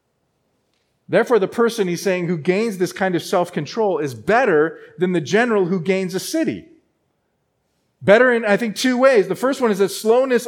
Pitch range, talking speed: 175-245 Hz, 185 wpm